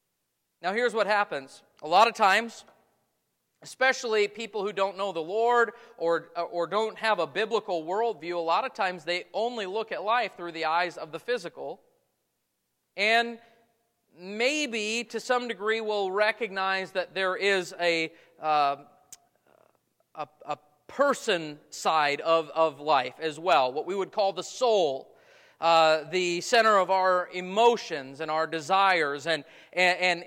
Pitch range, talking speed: 175-220 Hz, 145 wpm